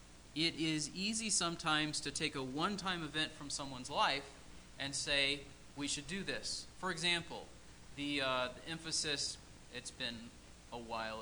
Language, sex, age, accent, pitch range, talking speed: English, male, 40-59, American, 120-165 Hz, 145 wpm